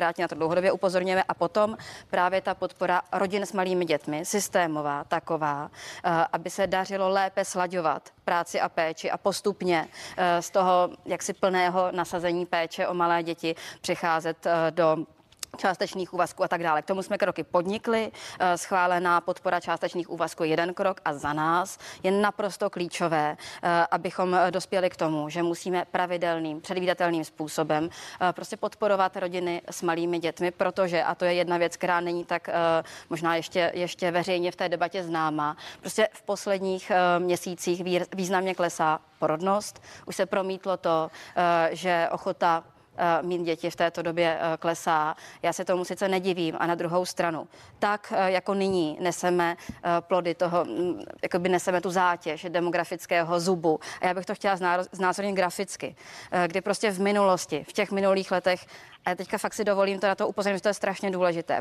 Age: 30-49